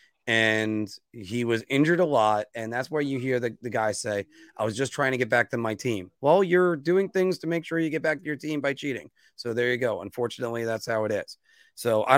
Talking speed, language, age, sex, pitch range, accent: 250 wpm, English, 30-49, male, 115-160 Hz, American